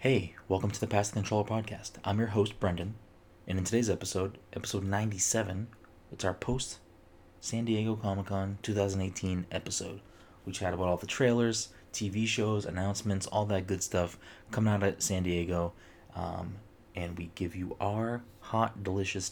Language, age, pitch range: English, 20-39, 90-105 Hz